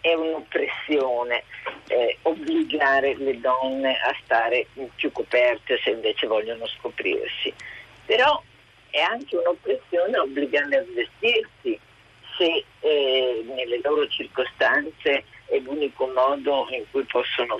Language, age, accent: Italian, 50-69, native